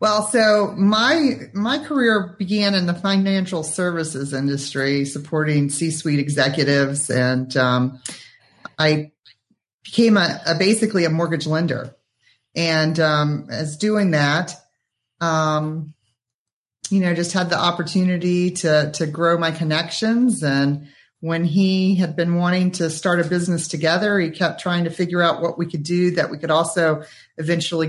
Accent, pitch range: American, 150-180 Hz